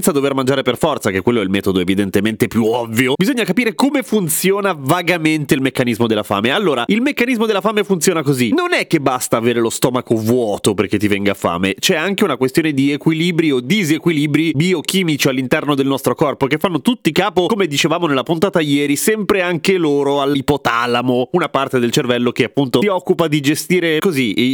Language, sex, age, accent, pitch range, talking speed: Italian, male, 30-49, native, 125-180 Hz, 190 wpm